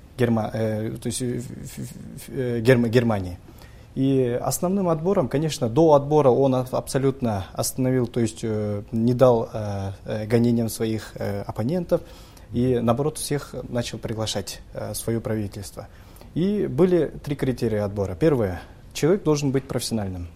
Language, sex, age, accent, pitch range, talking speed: Russian, male, 20-39, native, 110-140 Hz, 130 wpm